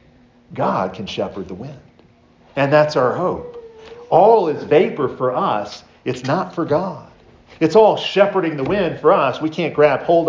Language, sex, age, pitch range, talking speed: English, male, 50-69, 160-225 Hz, 170 wpm